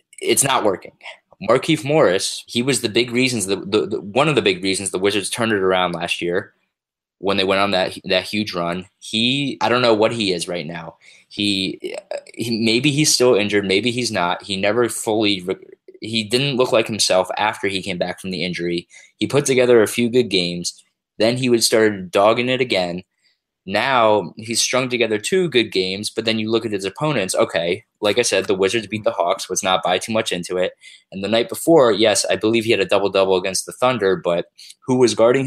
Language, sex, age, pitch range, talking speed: English, male, 20-39, 95-125 Hz, 215 wpm